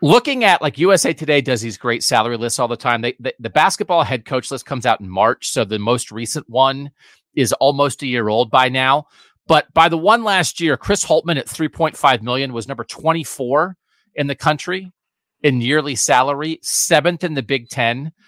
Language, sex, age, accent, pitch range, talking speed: English, male, 30-49, American, 135-220 Hz, 200 wpm